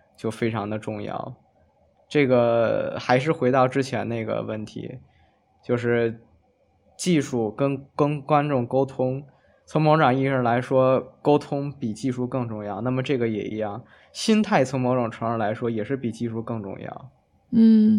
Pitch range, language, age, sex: 110-135 Hz, Chinese, 20-39, male